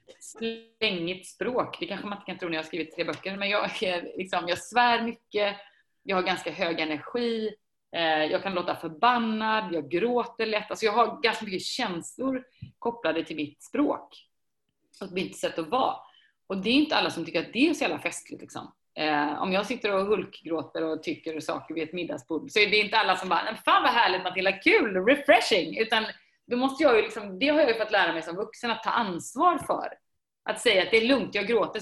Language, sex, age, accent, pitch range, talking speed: Swedish, female, 30-49, native, 165-225 Hz, 215 wpm